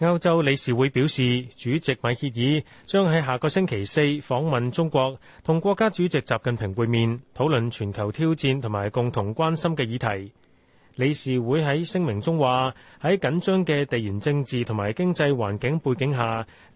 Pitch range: 120-160 Hz